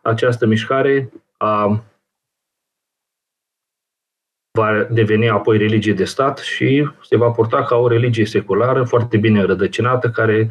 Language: Romanian